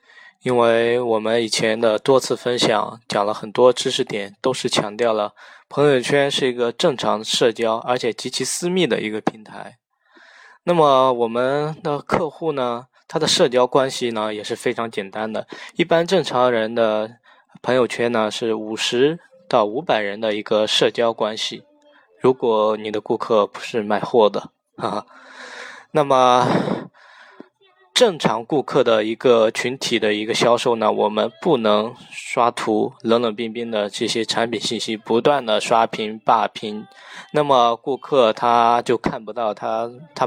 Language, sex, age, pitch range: Chinese, male, 20-39, 110-145 Hz